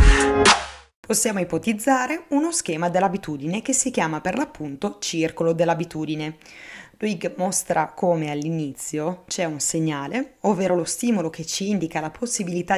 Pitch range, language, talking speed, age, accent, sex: 155-200 Hz, Italian, 125 wpm, 20-39, native, female